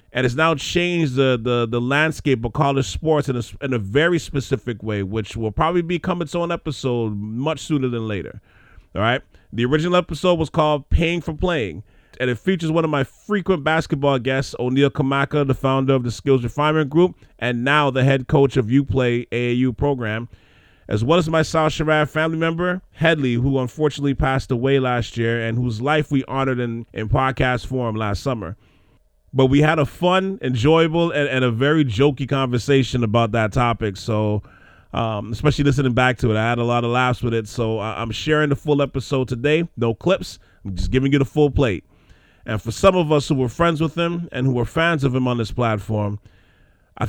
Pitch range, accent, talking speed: 115-150 Hz, American, 200 wpm